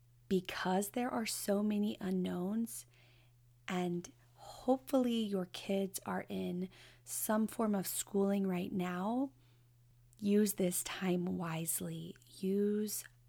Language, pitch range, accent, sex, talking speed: English, 180-210 Hz, American, female, 105 wpm